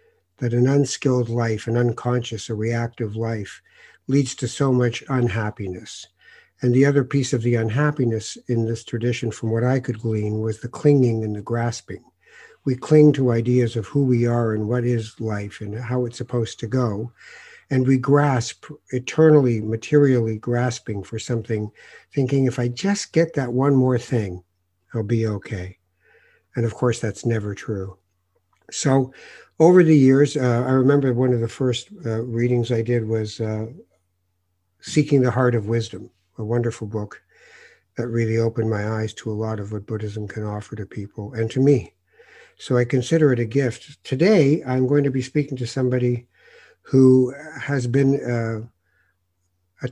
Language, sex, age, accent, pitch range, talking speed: English, male, 60-79, American, 110-130 Hz, 170 wpm